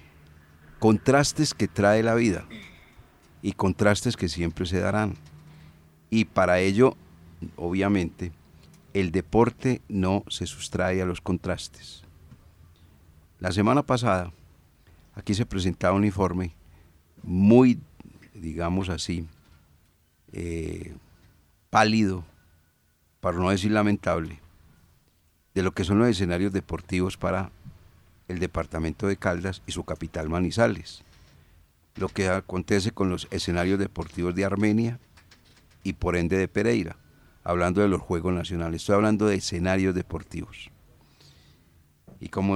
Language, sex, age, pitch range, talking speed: Spanish, male, 40-59, 85-105 Hz, 115 wpm